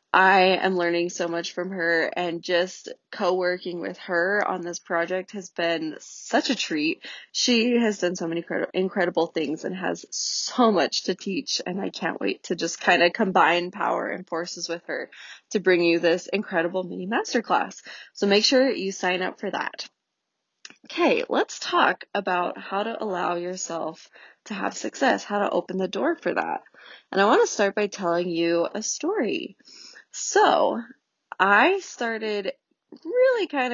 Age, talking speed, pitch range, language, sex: 20-39, 170 wpm, 180-245 Hz, English, female